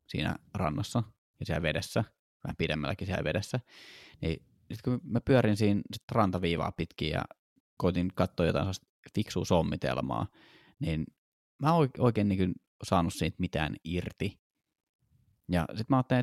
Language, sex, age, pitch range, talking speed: Finnish, male, 20-39, 85-105 Hz, 130 wpm